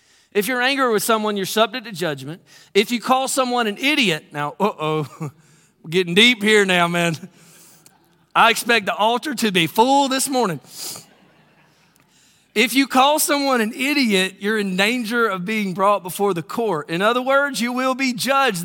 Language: English